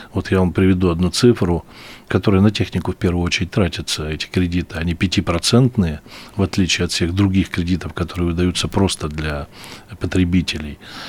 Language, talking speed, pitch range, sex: Russian, 150 wpm, 85-100 Hz, male